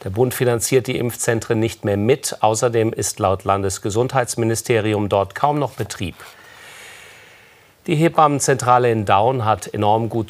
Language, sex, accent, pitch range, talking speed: German, male, German, 105-130 Hz, 135 wpm